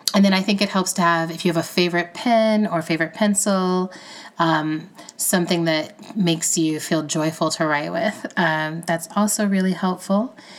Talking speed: 180 wpm